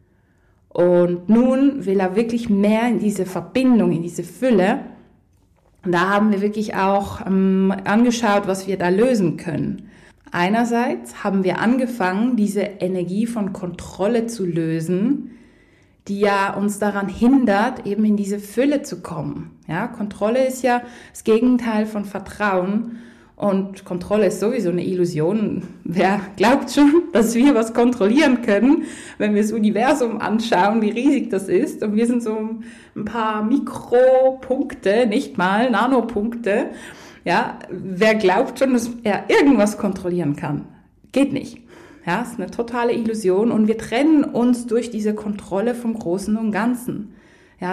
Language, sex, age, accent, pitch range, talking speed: German, female, 20-39, German, 190-240 Hz, 145 wpm